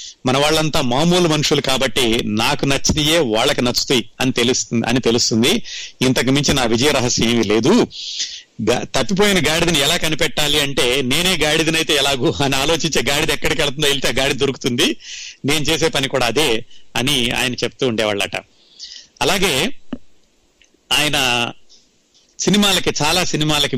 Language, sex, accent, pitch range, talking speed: Telugu, male, native, 125-160 Hz, 125 wpm